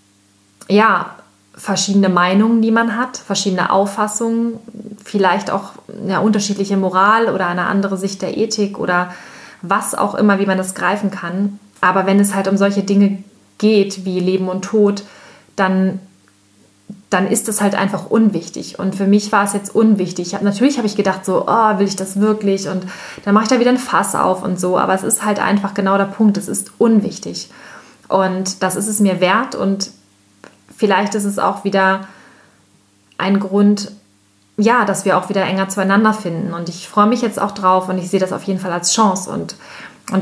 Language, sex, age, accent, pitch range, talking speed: German, female, 30-49, German, 185-210 Hz, 185 wpm